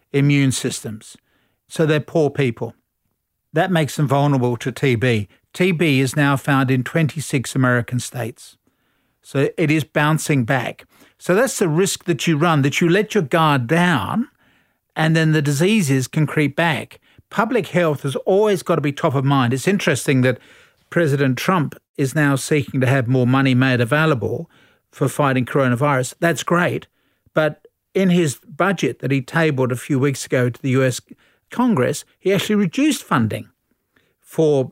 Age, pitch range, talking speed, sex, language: 50-69, 130-170 Hz, 160 wpm, male, English